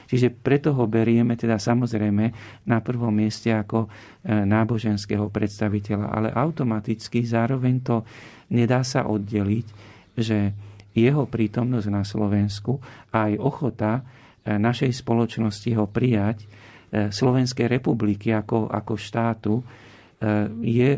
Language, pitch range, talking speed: Slovak, 105-120 Hz, 105 wpm